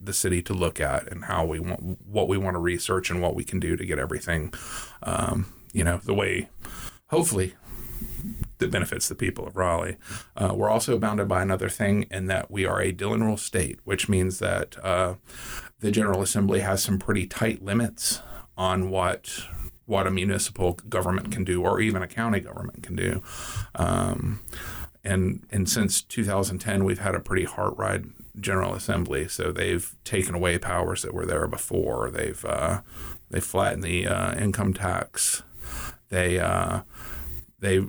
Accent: American